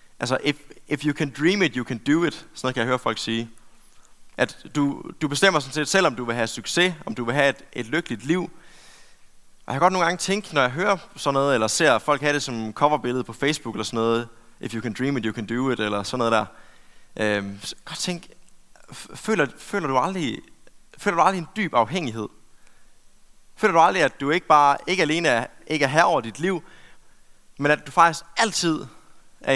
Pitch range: 115-160 Hz